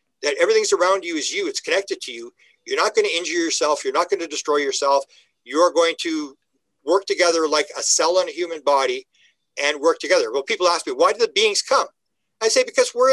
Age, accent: 50-69, American